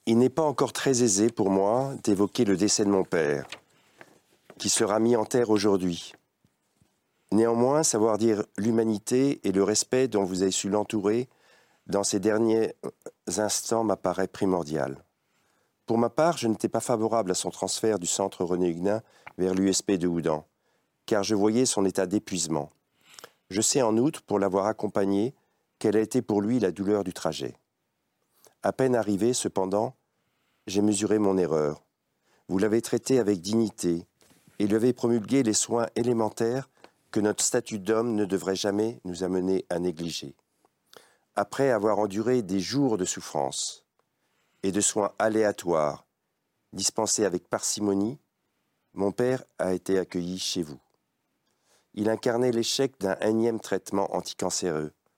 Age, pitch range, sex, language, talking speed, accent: 50-69, 95-115 Hz, male, French, 150 wpm, French